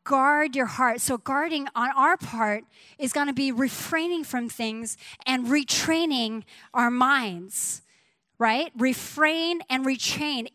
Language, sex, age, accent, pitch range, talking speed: English, female, 30-49, American, 240-320 Hz, 130 wpm